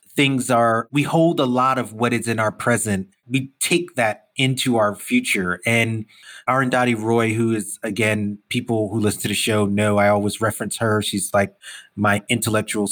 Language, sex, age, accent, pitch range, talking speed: English, male, 30-49, American, 110-125 Hz, 180 wpm